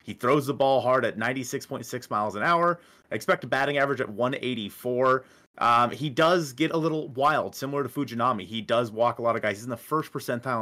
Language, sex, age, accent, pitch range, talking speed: English, male, 30-49, American, 120-150 Hz, 215 wpm